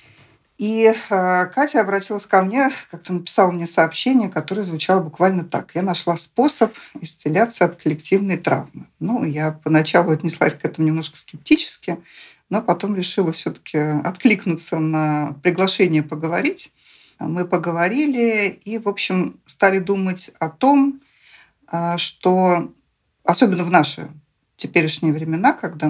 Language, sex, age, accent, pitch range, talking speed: Russian, female, 40-59, native, 155-195 Hz, 125 wpm